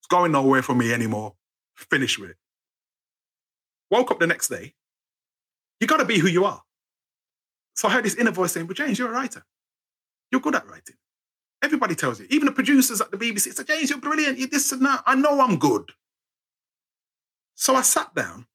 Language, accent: English, British